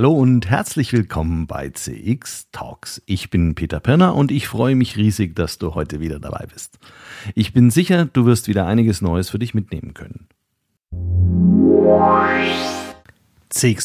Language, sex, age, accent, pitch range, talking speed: German, male, 50-69, German, 95-130 Hz, 150 wpm